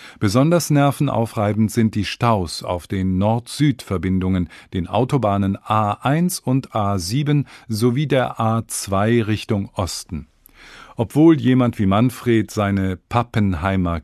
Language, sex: English, male